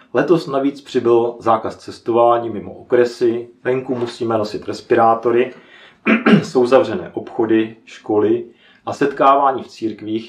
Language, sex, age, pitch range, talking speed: Czech, male, 40-59, 110-140 Hz, 110 wpm